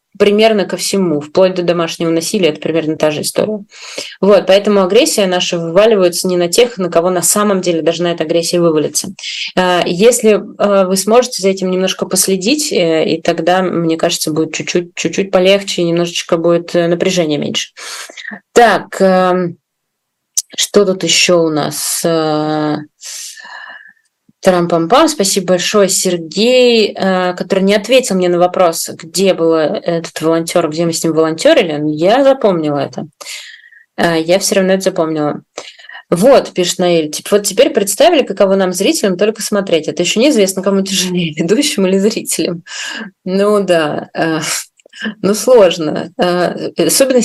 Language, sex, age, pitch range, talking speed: Russian, female, 20-39, 165-200 Hz, 135 wpm